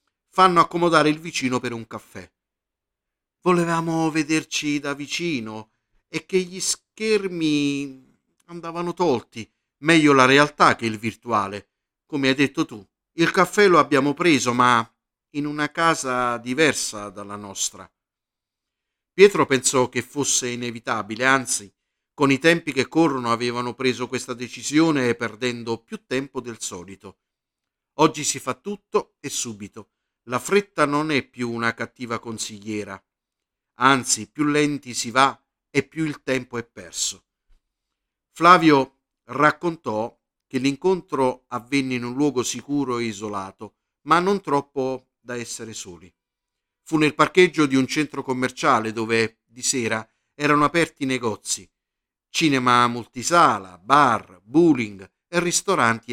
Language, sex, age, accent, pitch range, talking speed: Italian, male, 50-69, native, 115-150 Hz, 130 wpm